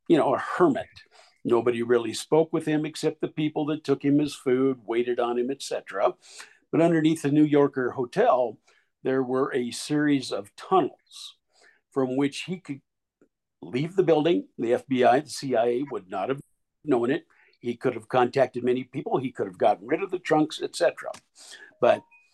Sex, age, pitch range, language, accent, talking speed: male, 50-69, 120-155 Hz, English, American, 175 wpm